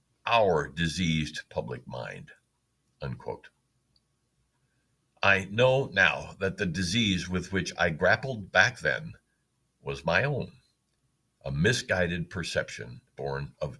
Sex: male